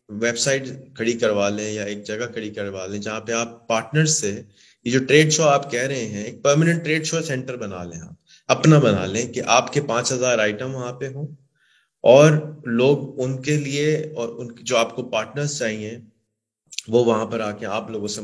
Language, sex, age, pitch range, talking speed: Urdu, male, 30-49, 105-130 Hz, 205 wpm